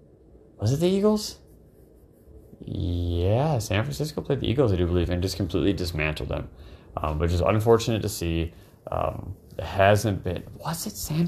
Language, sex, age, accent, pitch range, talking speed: English, male, 30-49, American, 85-105 Hz, 165 wpm